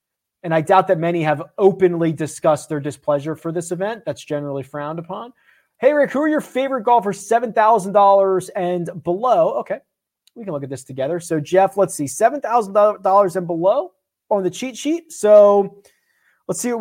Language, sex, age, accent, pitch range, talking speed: English, male, 30-49, American, 160-225 Hz, 175 wpm